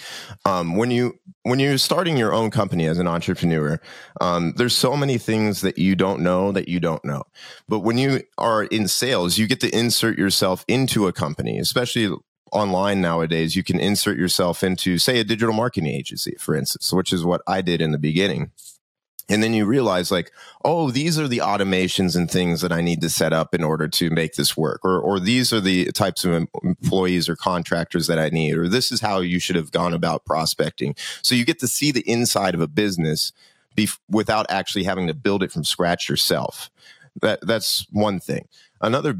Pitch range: 90-115 Hz